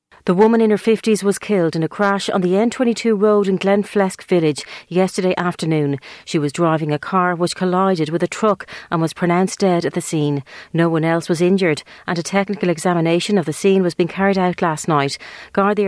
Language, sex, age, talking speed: English, female, 40-59, 210 wpm